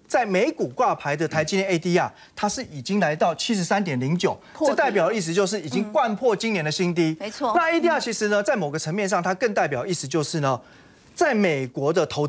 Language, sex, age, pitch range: Chinese, male, 30-49, 155-205 Hz